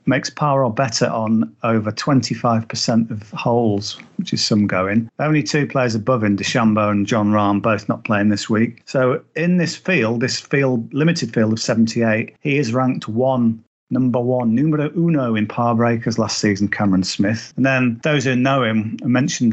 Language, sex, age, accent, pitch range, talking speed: English, male, 40-59, British, 110-130 Hz, 185 wpm